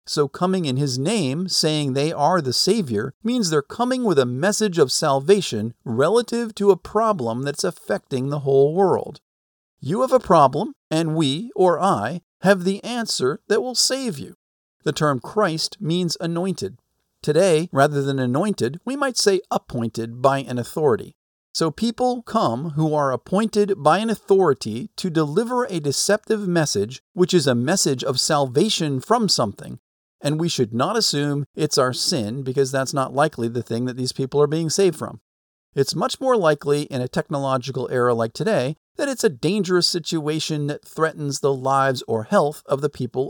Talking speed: 175 wpm